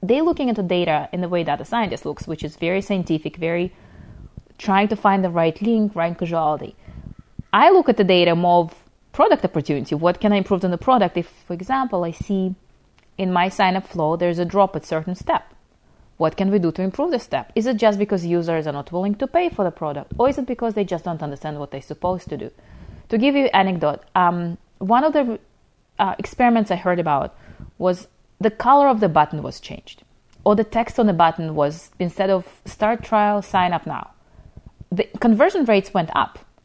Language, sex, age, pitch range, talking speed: English, female, 30-49, 165-220 Hz, 215 wpm